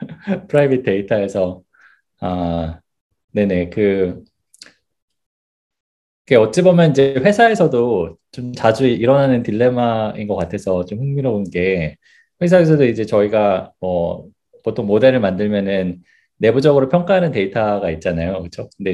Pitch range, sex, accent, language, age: 95-125 Hz, male, native, Korean, 20-39